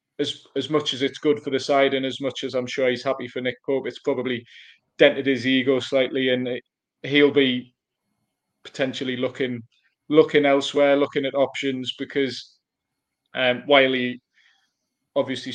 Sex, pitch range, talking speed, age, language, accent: male, 130-140 Hz, 160 wpm, 20-39, English, British